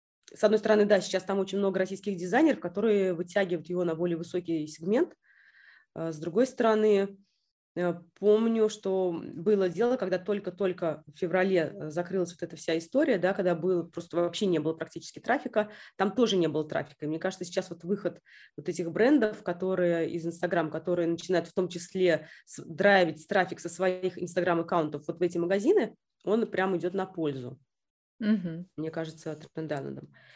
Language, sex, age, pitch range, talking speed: Russian, female, 20-39, 165-200 Hz, 160 wpm